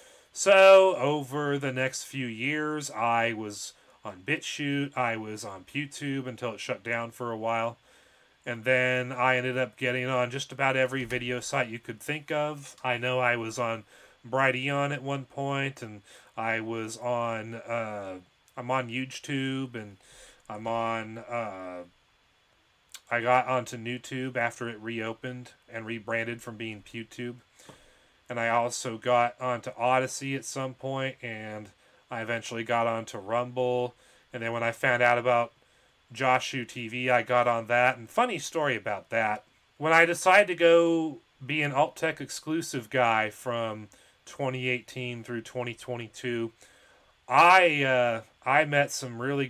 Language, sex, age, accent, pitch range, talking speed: English, male, 30-49, American, 115-135 Hz, 150 wpm